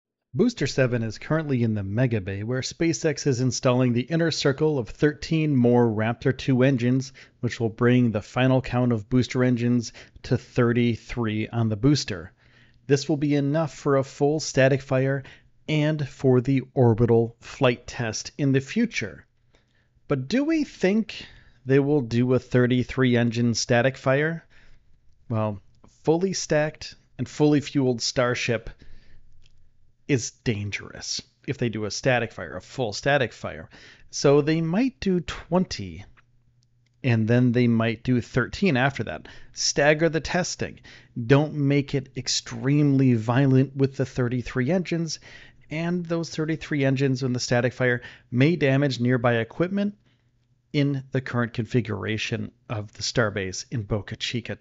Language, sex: English, male